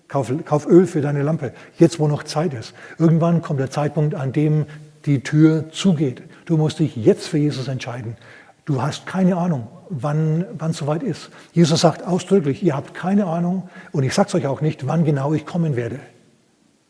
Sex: male